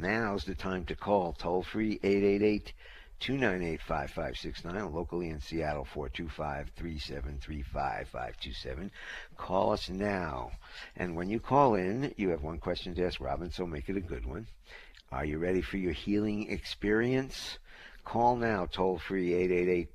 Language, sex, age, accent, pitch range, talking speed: English, male, 60-79, American, 80-100 Hz, 130 wpm